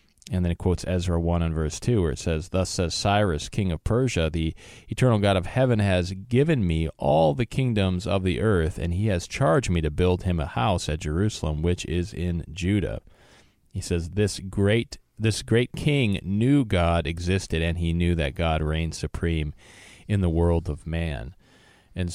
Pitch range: 85-100 Hz